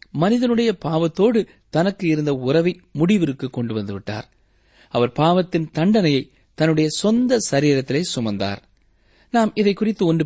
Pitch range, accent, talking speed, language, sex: 115-180 Hz, native, 100 wpm, Tamil, male